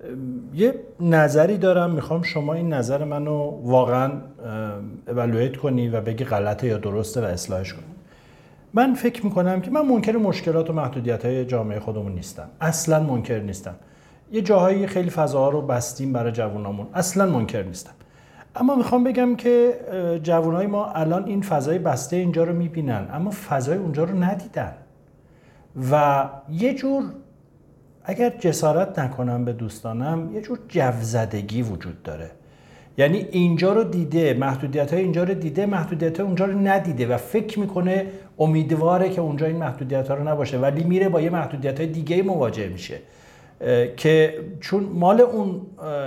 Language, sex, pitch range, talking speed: Persian, male, 125-185 Hz, 150 wpm